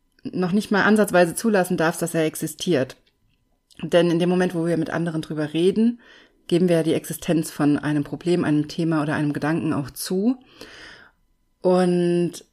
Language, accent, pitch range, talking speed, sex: German, German, 160-185 Hz, 165 wpm, female